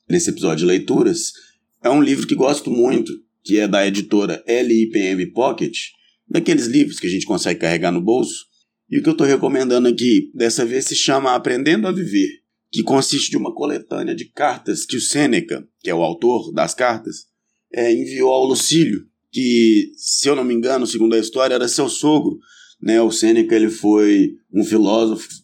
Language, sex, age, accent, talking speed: Portuguese, male, 30-49, Brazilian, 180 wpm